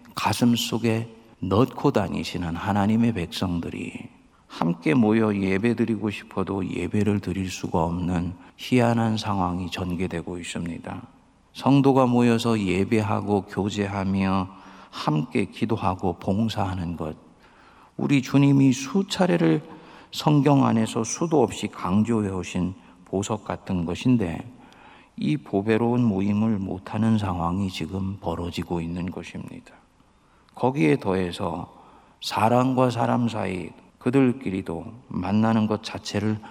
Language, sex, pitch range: Korean, male, 95-115 Hz